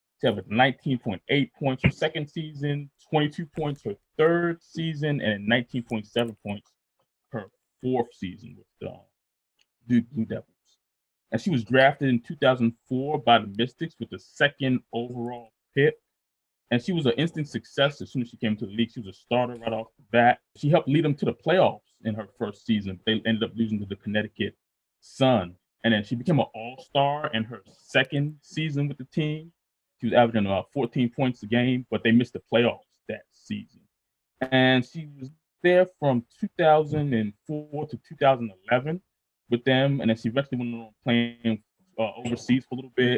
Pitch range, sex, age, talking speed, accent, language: 115-145 Hz, male, 20-39, 180 wpm, American, English